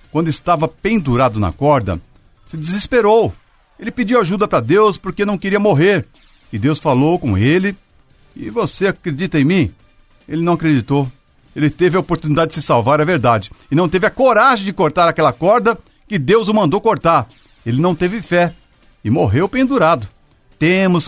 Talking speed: 170 wpm